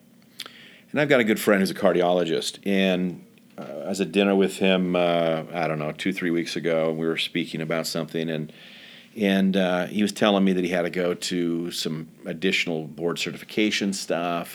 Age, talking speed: 40-59, 200 wpm